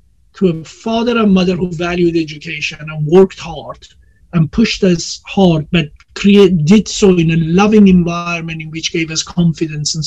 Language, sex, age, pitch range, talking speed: English, male, 50-69, 165-195 Hz, 165 wpm